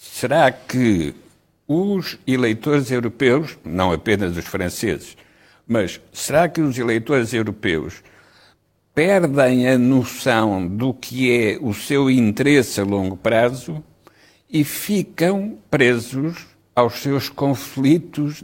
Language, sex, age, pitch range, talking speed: Portuguese, male, 60-79, 110-145 Hz, 105 wpm